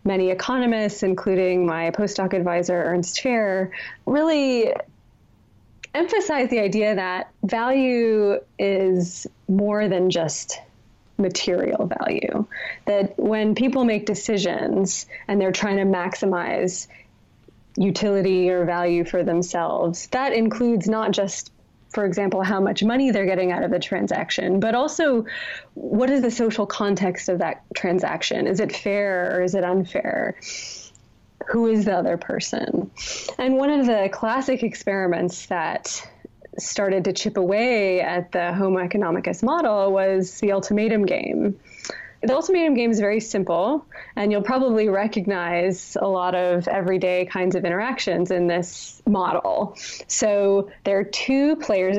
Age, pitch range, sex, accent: 20-39, 185-230 Hz, female, American